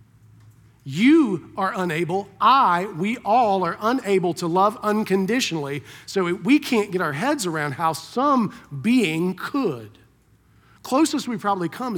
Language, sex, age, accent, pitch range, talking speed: English, male, 40-59, American, 150-200 Hz, 130 wpm